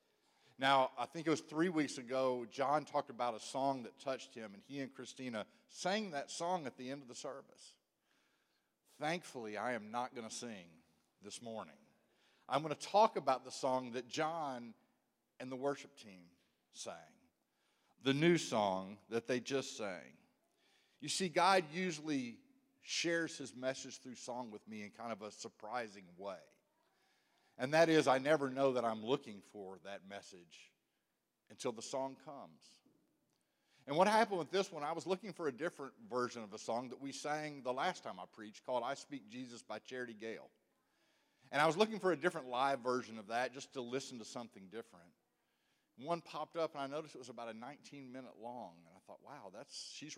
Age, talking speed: 50-69, 190 wpm